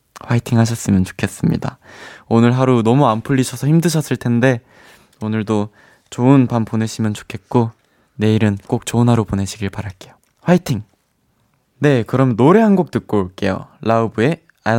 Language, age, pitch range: Korean, 20-39, 105-155 Hz